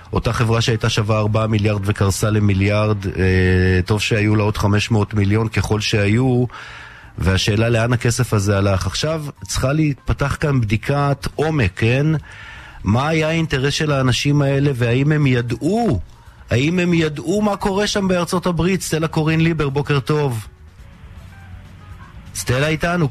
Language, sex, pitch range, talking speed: Hebrew, male, 105-150 Hz, 135 wpm